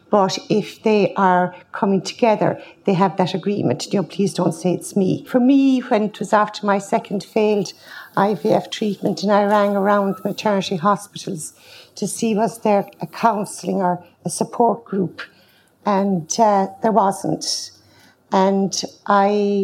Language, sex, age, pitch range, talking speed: English, female, 60-79, 185-215 Hz, 155 wpm